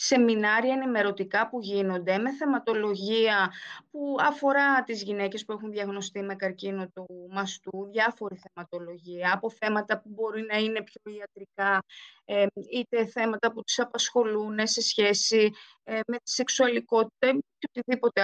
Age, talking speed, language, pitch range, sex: 20-39, 130 wpm, Greek, 195-230 Hz, female